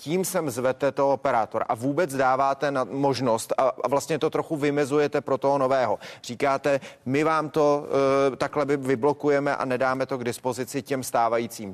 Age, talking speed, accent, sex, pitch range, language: 30-49, 160 wpm, native, male, 135-150 Hz, Czech